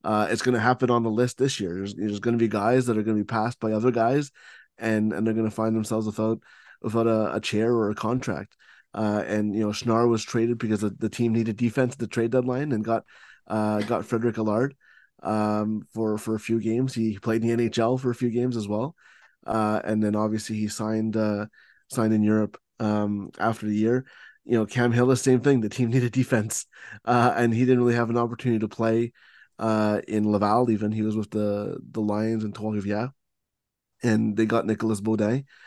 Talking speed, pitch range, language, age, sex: 220 wpm, 105-120 Hz, English, 20-39, male